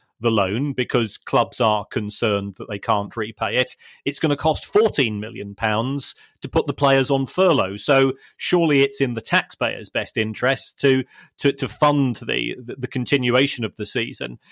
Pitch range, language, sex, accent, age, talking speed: 115-140 Hz, English, male, British, 30-49, 175 wpm